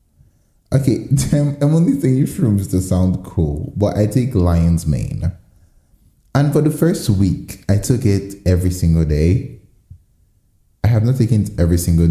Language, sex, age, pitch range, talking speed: English, male, 20-39, 85-110 Hz, 155 wpm